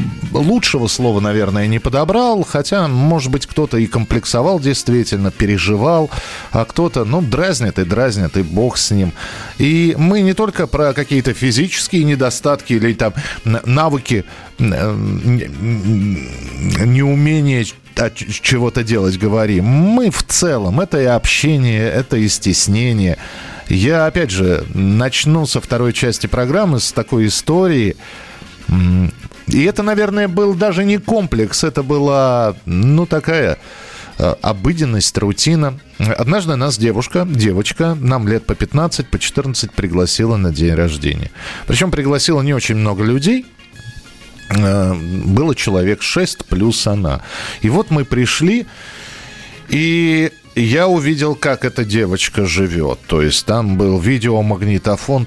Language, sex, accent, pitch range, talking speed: Russian, male, native, 105-150 Hz, 125 wpm